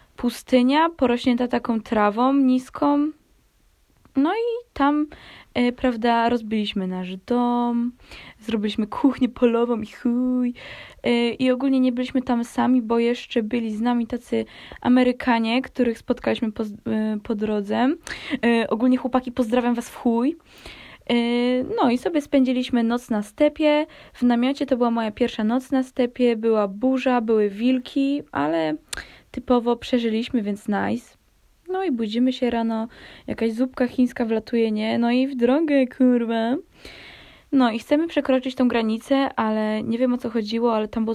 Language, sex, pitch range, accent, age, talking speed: Polish, female, 230-265 Hz, native, 20-39, 140 wpm